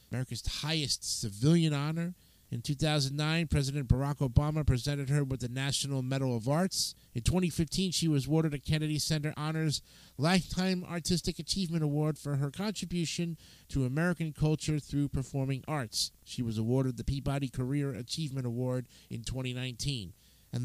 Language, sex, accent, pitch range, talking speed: English, male, American, 130-160 Hz, 145 wpm